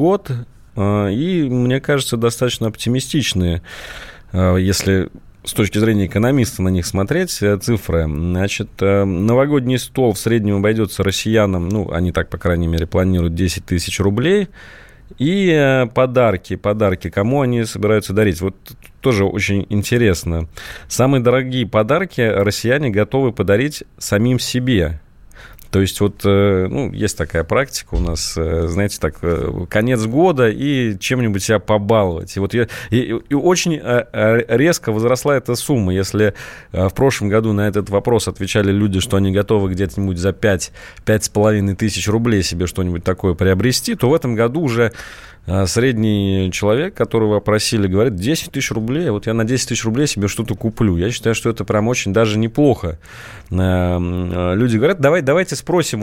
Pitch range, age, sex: 95-125 Hz, 30-49, male